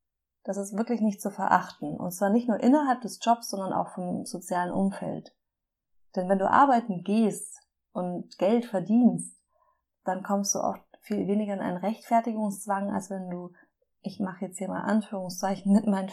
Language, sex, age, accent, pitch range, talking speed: German, female, 20-39, German, 180-225 Hz, 170 wpm